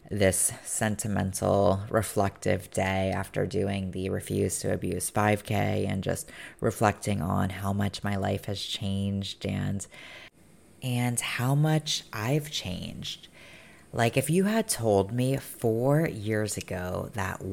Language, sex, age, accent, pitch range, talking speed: English, female, 20-39, American, 100-125 Hz, 125 wpm